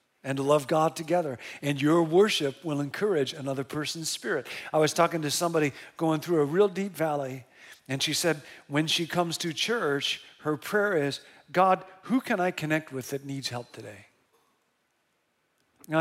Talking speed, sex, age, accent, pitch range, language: 170 wpm, male, 50-69, American, 150-200 Hz, English